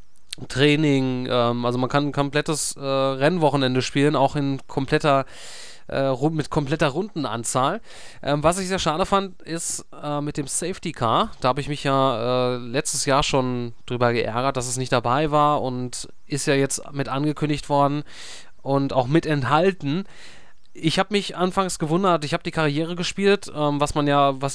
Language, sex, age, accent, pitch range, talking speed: German, male, 20-39, German, 130-155 Hz, 175 wpm